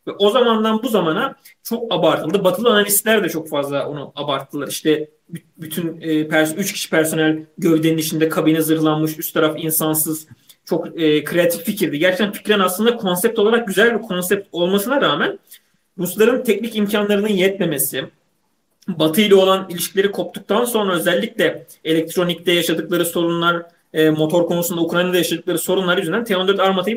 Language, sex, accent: Turkish, male, native